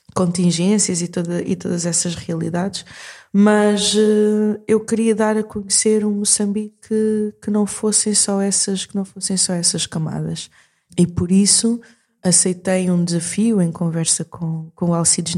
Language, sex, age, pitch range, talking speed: Portuguese, female, 20-39, 170-205 Hz, 150 wpm